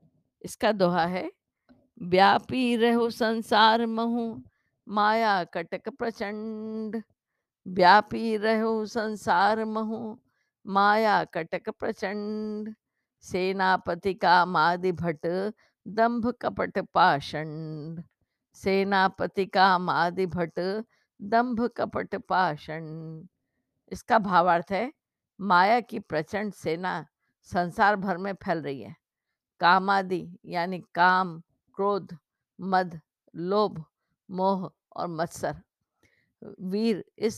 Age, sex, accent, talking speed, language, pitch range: 50-69, female, native, 85 wpm, Hindi, 180-225 Hz